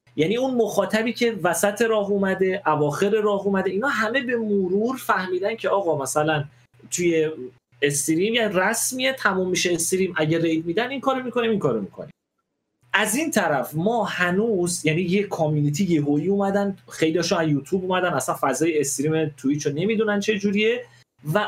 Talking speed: 155 wpm